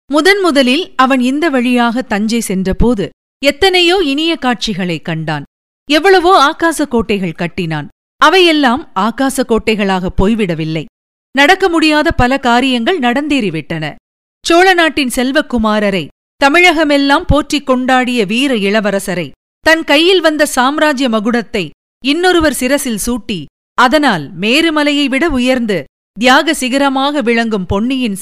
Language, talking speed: Tamil, 95 wpm